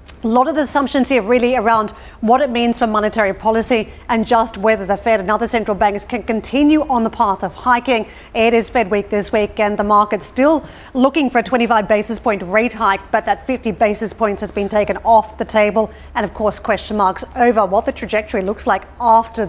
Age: 40-59